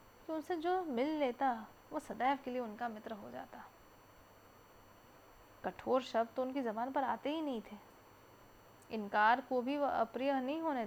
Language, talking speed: Hindi, 155 wpm